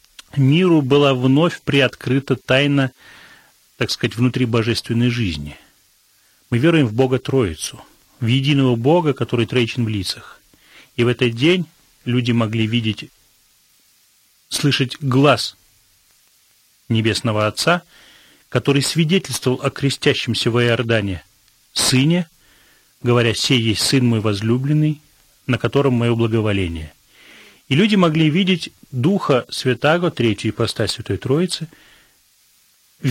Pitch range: 115-140 Hz